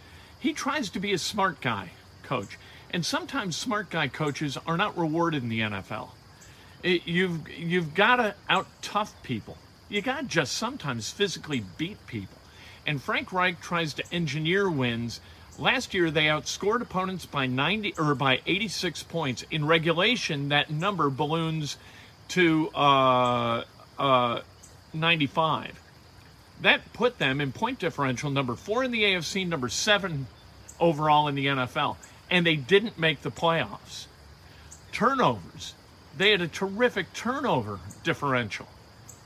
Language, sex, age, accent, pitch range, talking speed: English, male, 40-59, American, 125-170 Hz, 145 wpm